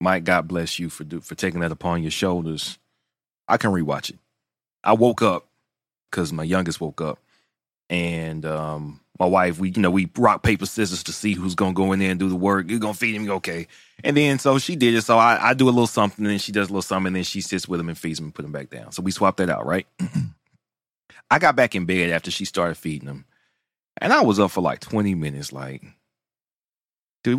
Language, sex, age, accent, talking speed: English, male, 30-49, American, 250 wpm